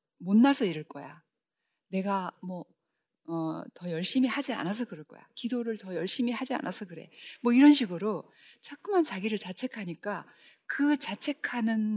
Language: Korean